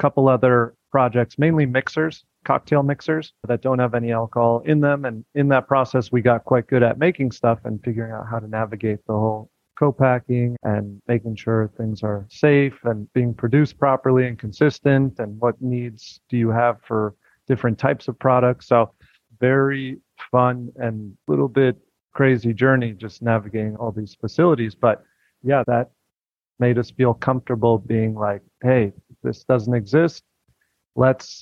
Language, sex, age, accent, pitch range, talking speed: English, male, 40-59, American, 115-130 Hz, 160 wpm